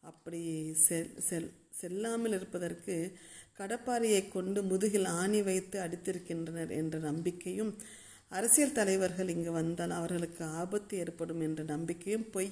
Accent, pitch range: native, 170-210 Hz